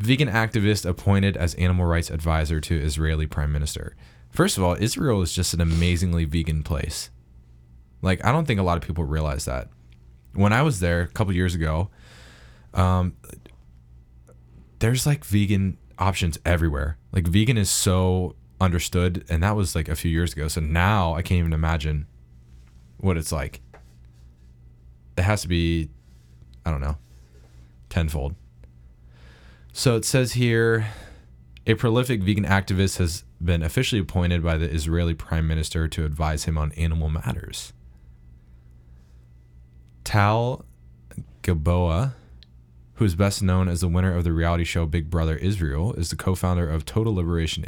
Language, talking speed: English, 150 wpm